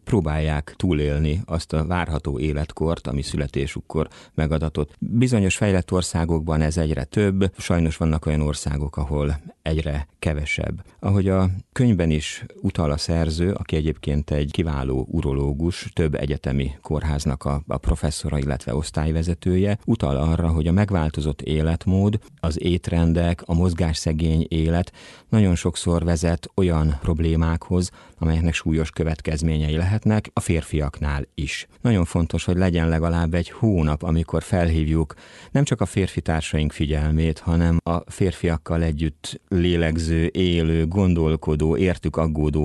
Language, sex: Hungarian, male